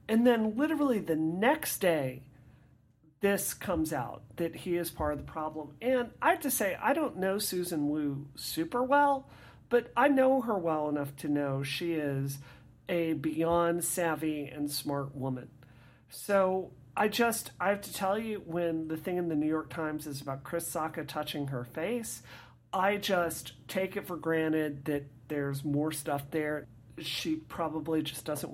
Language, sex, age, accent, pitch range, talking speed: English, male, 40-59, American, 145-205 Hz, 170 wpm